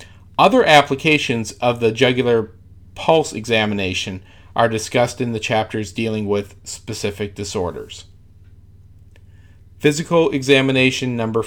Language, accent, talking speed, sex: English, American, 100 wpm, male